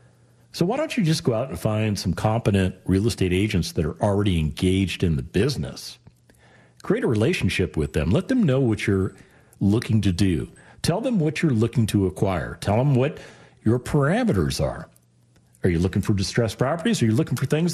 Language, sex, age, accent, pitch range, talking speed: English, male, 50-69, American, 90-140 Hz, 195 wpm